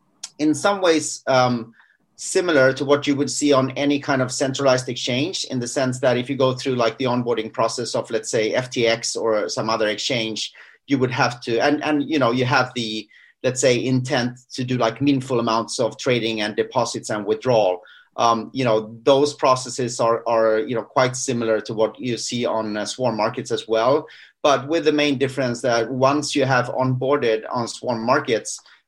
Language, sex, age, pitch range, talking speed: English, male, 30-49, 115-140 Hz, 195 wpm